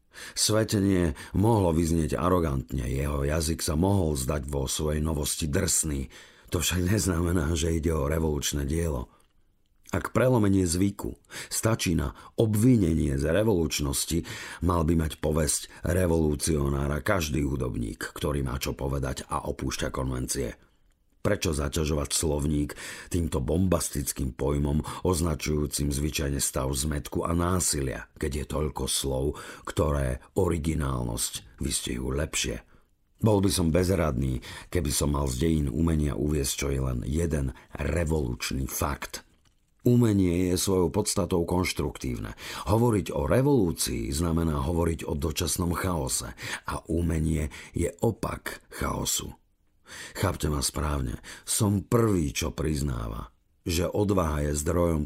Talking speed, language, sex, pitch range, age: 120 wpm, Slovak, male, 75-90 Hz, 50-69